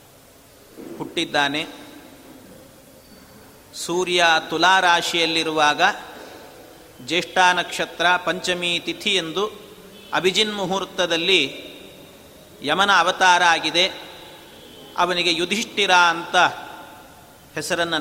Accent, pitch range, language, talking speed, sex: native, 175-215 Hz, Kannada, 55 wpm, male